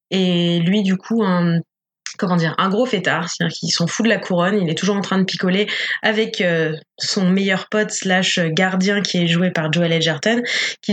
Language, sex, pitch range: French, female, 175-210 Hz